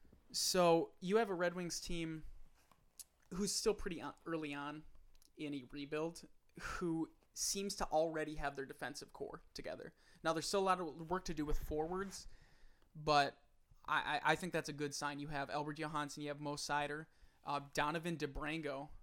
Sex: male